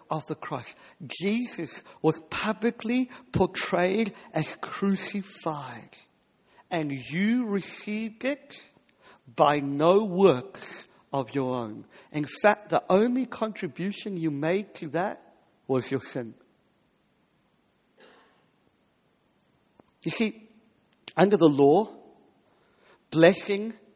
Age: 50-69